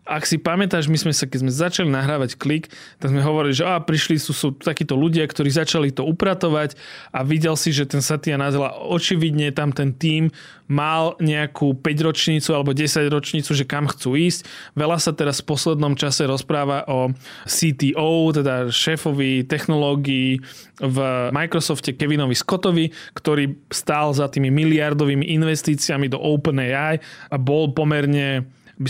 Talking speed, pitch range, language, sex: 155 wpm, 140-165 Hz, Slovak, male